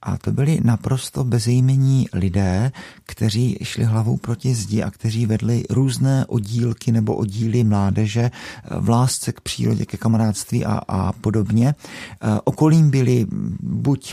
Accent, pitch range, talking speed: native, 105-125 Hz, 135 wpm